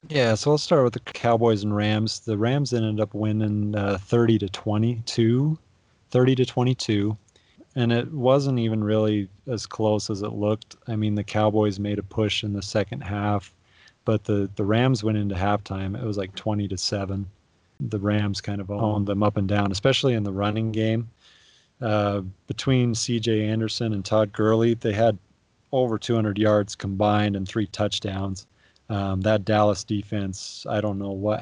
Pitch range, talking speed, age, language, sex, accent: 100-110 Hz, 180 wpm, 30-49, English, male, American